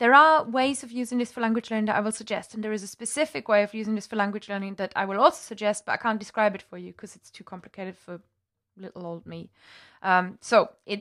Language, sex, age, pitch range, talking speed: English, female, 20-39, 210-265 Hz, 260 wpm